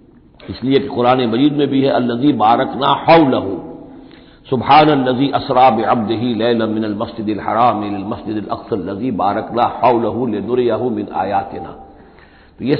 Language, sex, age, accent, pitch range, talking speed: Hindi, male, 50-69, native, 115-150 Hz, 105 wpm